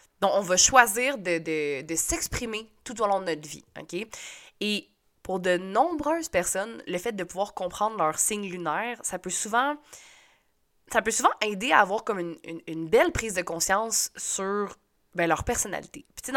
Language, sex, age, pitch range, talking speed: French, female, 20-39, 170-265 Hz, 190 wpm